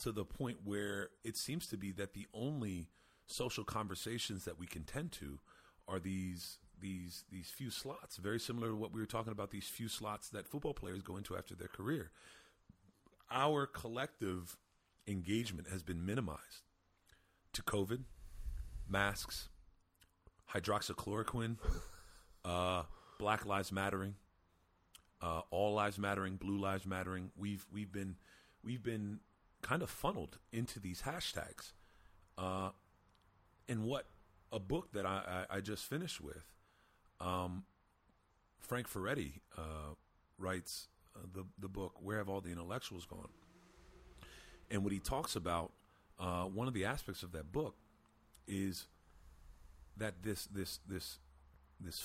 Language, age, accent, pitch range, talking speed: English, 40-59, American, 85-105 Hz, 140 wpm